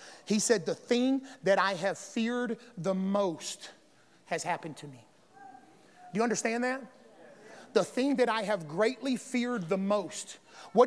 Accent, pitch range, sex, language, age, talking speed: American, 250-345 Hz, male, English, 40-59, 155 wpm